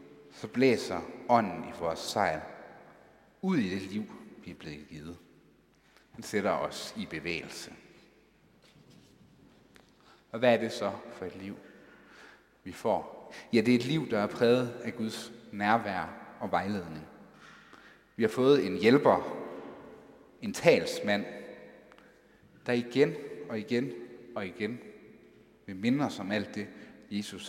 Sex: male